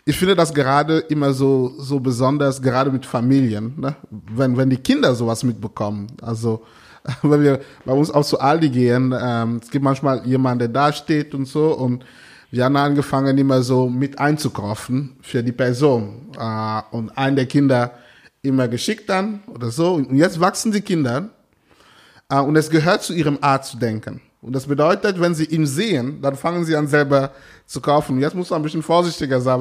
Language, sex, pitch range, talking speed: German, male, 125-165 Hz, 190 wpm